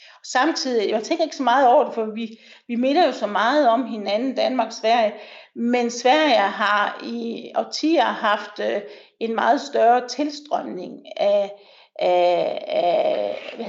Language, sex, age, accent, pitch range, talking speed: Danish, female, 50-69, native, 225-300 Hz, 145 wpm